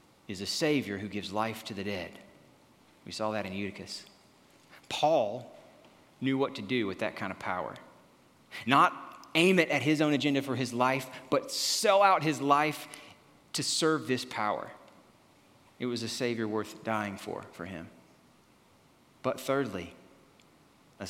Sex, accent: male, American